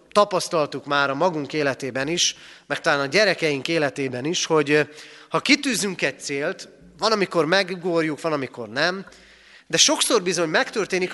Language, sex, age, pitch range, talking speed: Hungarian, male, 30-49, 140-185 Hz, 145 wpm